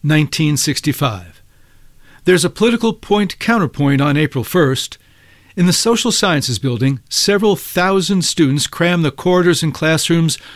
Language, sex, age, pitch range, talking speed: English, male, 60-79, 135-180 Hz, 120 wpm